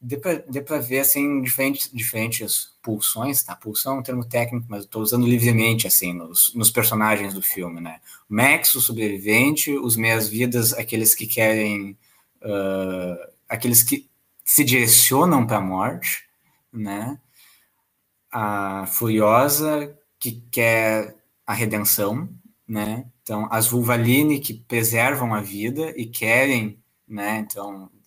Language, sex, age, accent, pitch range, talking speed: Portuguese, male, 20-39, Brazilian, 105-135 Hz, 130 wpm